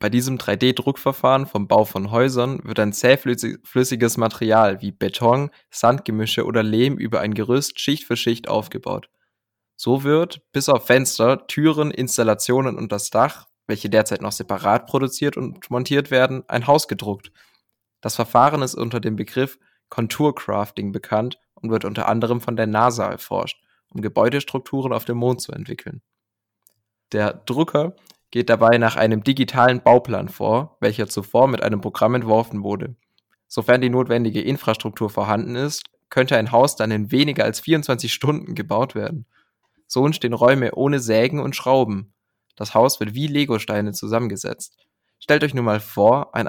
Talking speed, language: 155 wpm, German